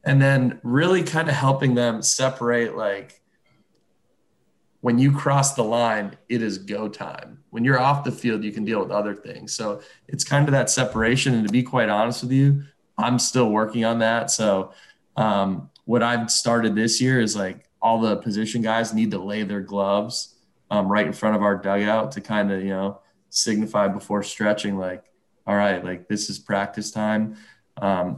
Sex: male